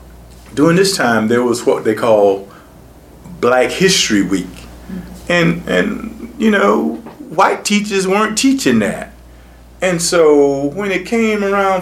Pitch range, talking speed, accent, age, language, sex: 140-225 Hz, 130 wpm, American, 40-59, English, male